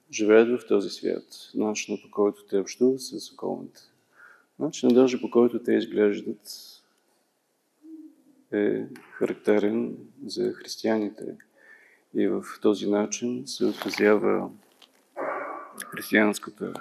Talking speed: 100 wpm